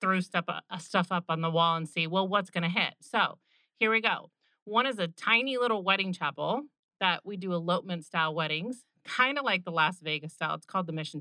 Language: English